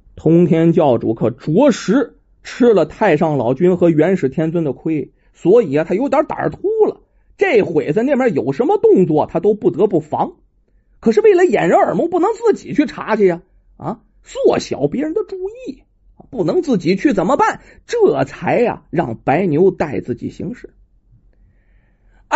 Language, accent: Chinese, native